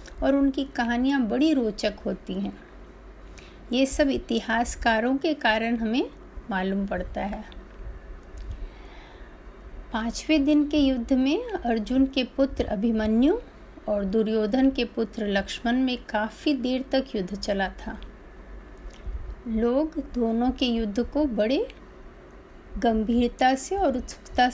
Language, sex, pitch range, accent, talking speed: Hindi, female, 215-270 Hz, native, 115 wpm